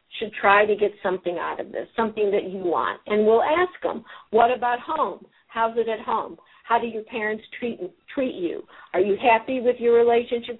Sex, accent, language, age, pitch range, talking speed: female, American, English, 50-69, 210-255 Hz, 205 wpm